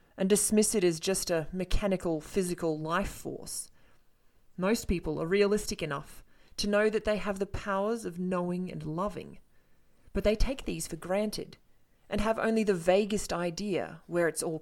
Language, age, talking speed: English, 30-49, 170 wpm